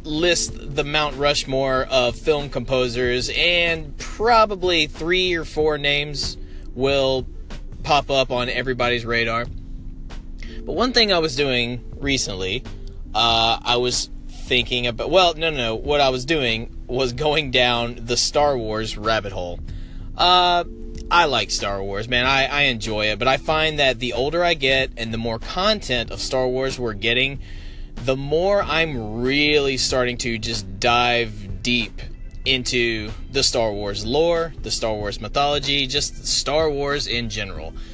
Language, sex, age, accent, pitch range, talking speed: English, male, 20-39, American, 115-145 Hz, 155 wpm